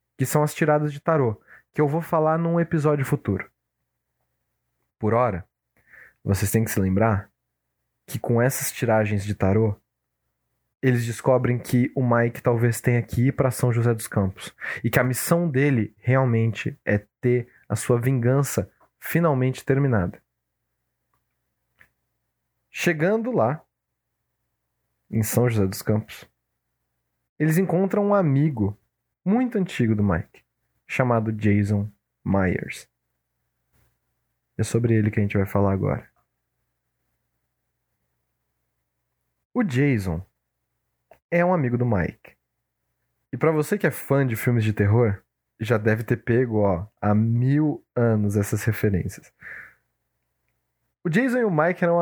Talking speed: 130 wpm